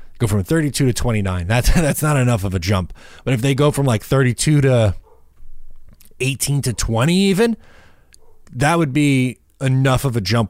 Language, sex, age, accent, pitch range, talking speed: English, male, 20-39, American, 95-115 Hz, 175 wpm